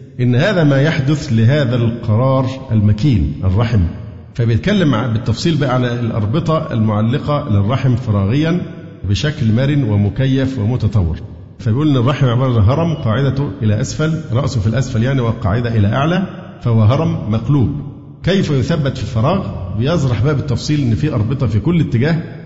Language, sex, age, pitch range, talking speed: Arabic, male, 50-69, 110-140 Hz, 135 wpm